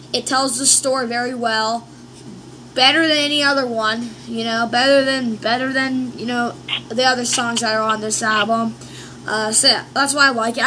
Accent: American